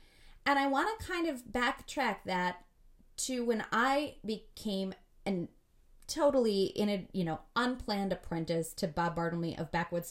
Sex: female